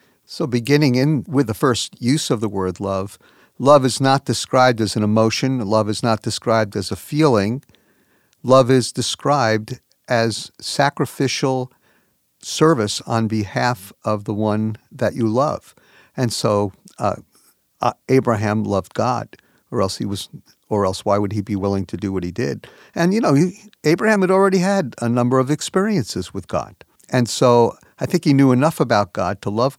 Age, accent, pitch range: 50-69, American, 110-145 Hz